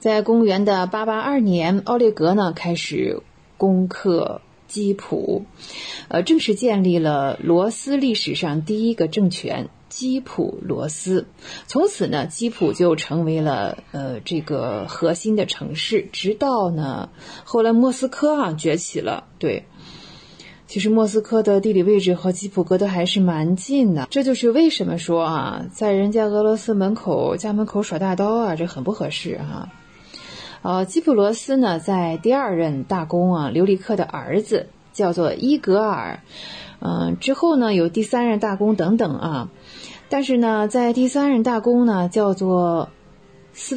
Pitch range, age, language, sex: 175-230 Hz, 20-39, Chinese, female